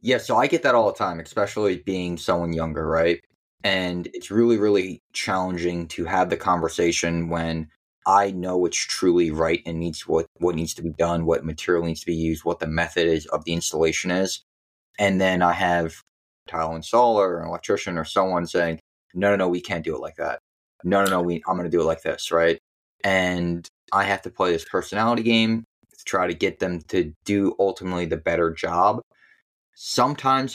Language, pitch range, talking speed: English, 80-95 Hz, 205 wpm